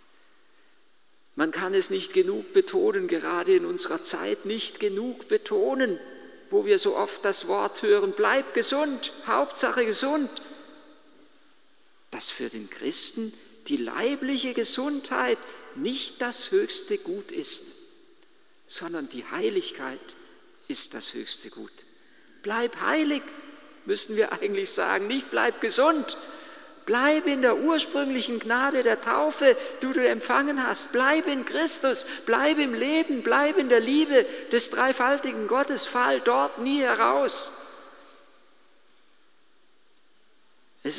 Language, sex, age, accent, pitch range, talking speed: German, male, 50-69, German, 255-365 Hz, 120 wpm